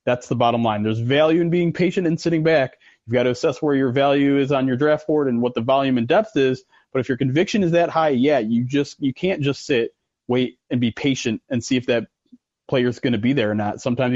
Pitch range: 125-165 Hz